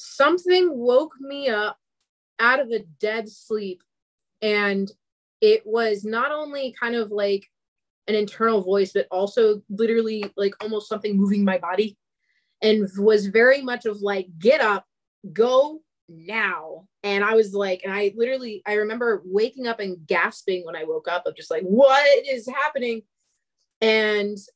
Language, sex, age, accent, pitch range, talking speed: English, female, 30-49, American, 195-235 Hz, 155 wpm